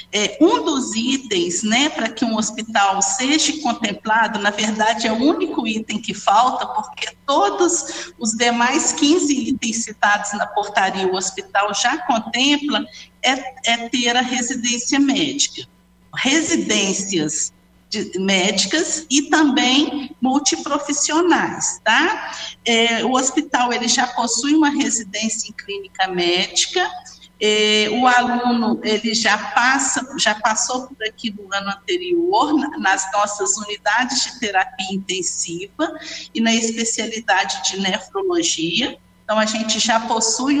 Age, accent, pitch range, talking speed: 50-69, Brazilian, 215-280 Hz, 125 wpm